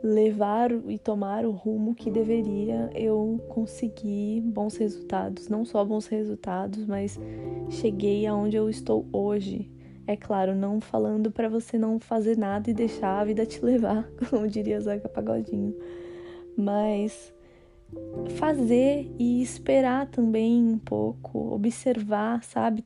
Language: Portuguese